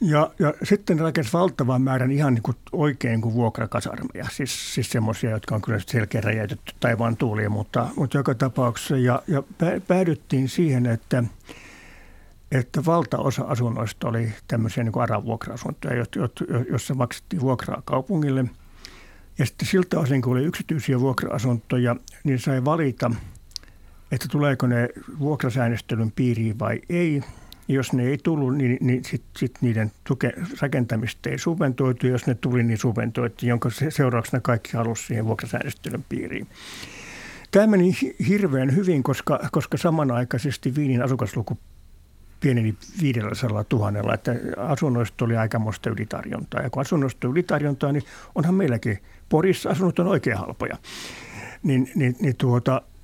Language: Finnish